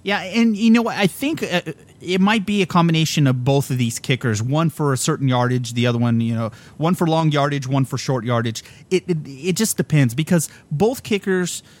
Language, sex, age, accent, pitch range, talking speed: English, male, 30-49, American, 125-165 Hz, 215 wpm